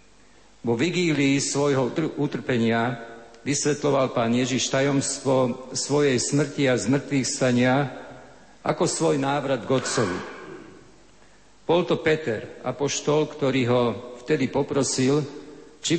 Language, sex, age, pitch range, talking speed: Slovak, male, 50-69, 125-145 Hz, 100 wpm